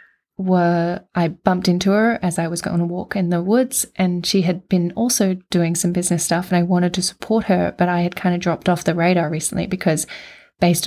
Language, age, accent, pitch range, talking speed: English, 20-39, Australian, 170-205 Hz, 225 wpm